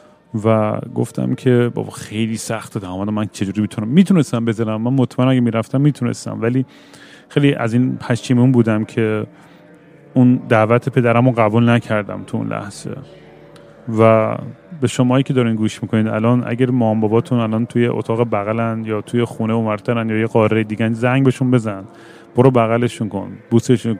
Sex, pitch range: male, 110-130 Hz